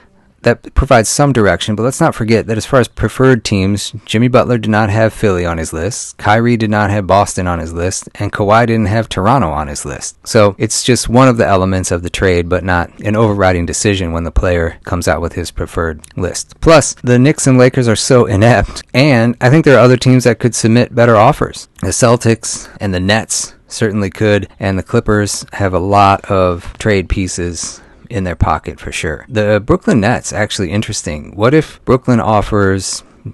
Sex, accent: male, American